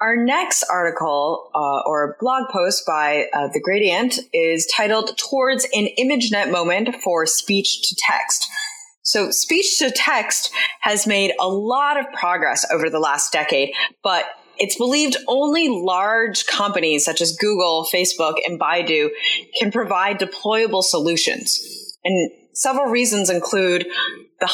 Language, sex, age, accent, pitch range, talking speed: English, female, 20-39, American, 160-230 Hz, 125 wpm